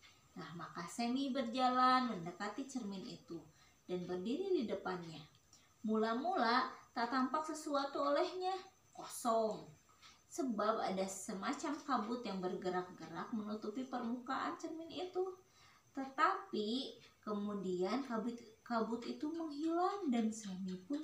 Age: 20-39